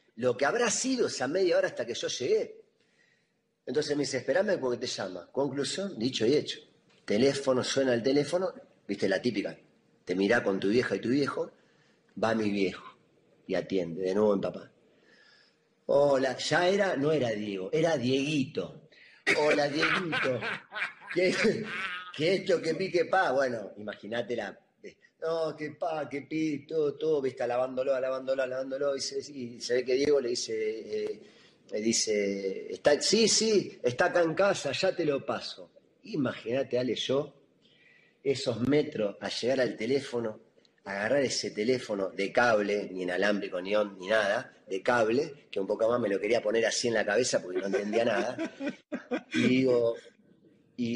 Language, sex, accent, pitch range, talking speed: Spanish, male, Argentinian, 120-185 Hz, 165 wpm